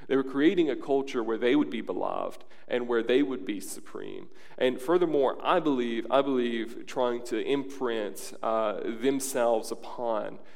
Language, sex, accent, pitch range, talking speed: English, male, American, 115-180 Hz, 160 wpm